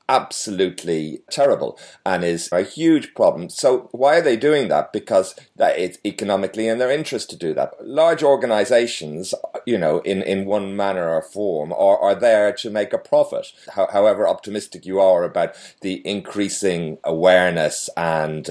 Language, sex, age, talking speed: English, male, 40-59, 160 wpm